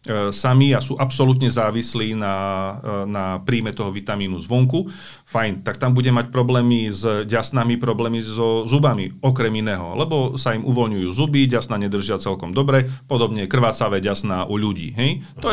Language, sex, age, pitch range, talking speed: Slovak, male, 40-59, 110-135 Hz, 155 wpm